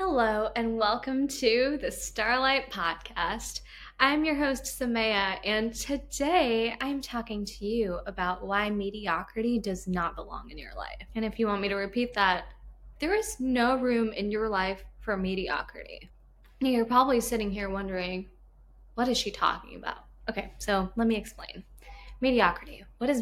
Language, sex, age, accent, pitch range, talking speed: English, female, 10-29, American, 195-255 Hz, 160 wpm